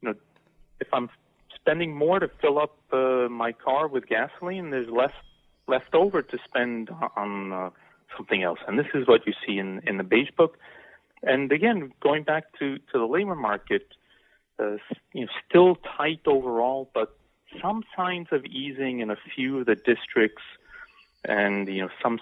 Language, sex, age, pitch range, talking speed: English, male, 40-59, 105-155 Hz, 170 wpm